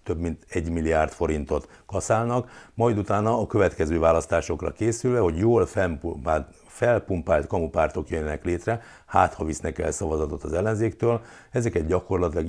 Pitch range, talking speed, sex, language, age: 80-110 Hz, 130 wpm, male, Hungarian, 60-79